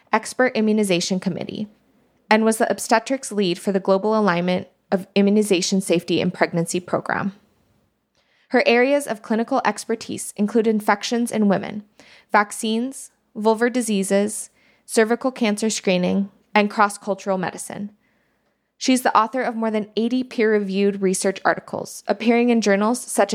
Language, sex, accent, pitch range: English, female, American, 195-235 Hz